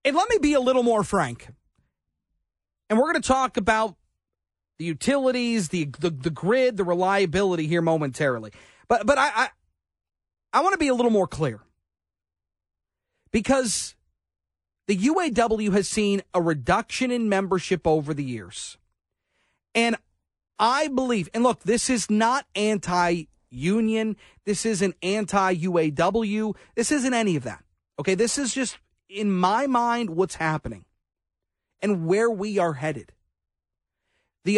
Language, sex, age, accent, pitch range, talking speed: English, male, 40-59, American, 140-215 Hz, 140 wpm